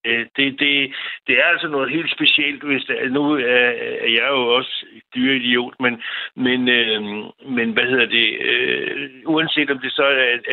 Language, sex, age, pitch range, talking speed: Danish, male, 60-79, 120-140 Hz, 175 wpm